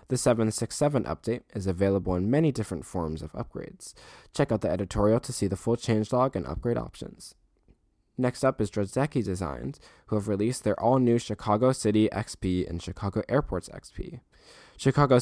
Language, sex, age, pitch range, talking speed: English, male, 10-29, 95-120 Hz, 160 wpm